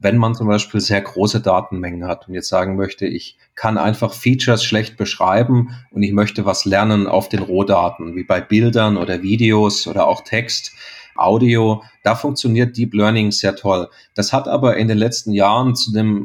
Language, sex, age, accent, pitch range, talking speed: English, male, 30-49, German, 105-125 Hz, 185 wpm